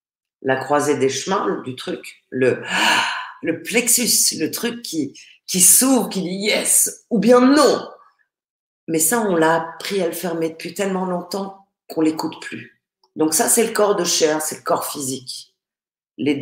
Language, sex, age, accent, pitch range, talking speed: French, female, 40-59, French, 140-180 Hz, 170 wpm